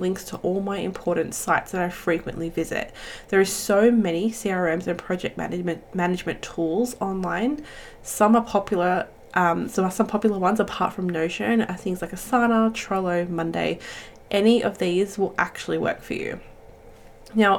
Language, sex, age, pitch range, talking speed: English, female, 20-39, 175-215 Hz, 165 wpm